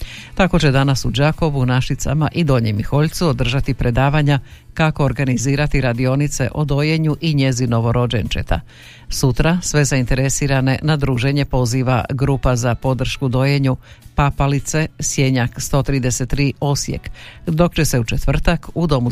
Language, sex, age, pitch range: Croatian, female, 50-69, 125-150 Hz